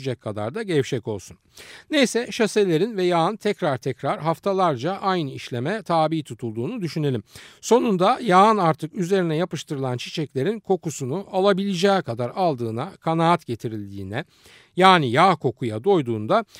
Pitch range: 125-195 Hz